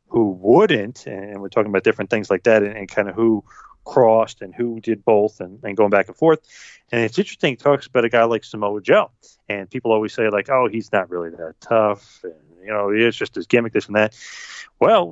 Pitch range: 100-120 Hz